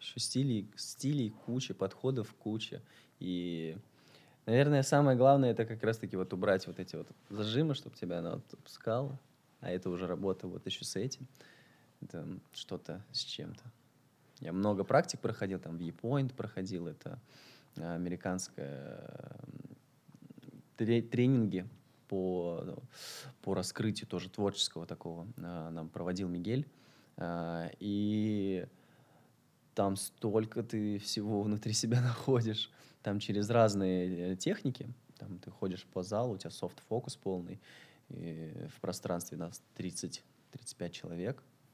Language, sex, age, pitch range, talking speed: Russian, male, 20-39, 95-125 Hz, 120 wpm